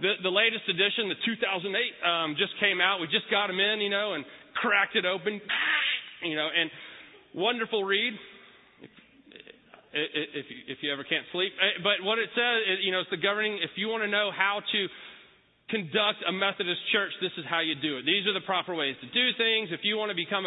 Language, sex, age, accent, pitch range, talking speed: English, male, 30-49, American, 180-225 Hz, 210 wpm